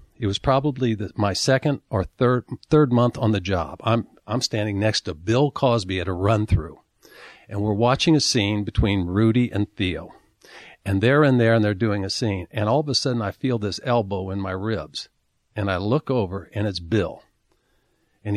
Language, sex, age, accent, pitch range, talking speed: English, male, 50-69, American, 100-130 Hz, 200 wpm